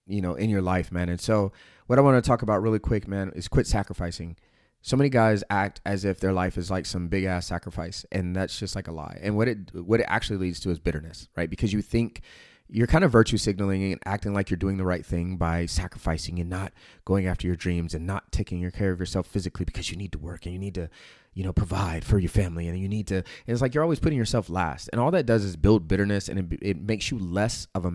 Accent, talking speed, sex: American, 265 wpm, male